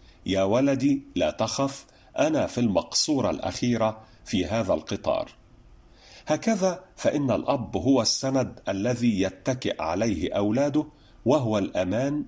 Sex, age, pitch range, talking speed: male, 50-69, 105-140 Hz, 110 wpm